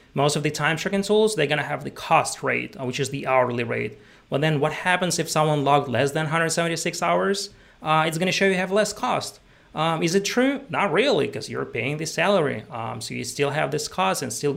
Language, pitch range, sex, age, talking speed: English, 140-185 Hz, male, 30-49, 235 wpm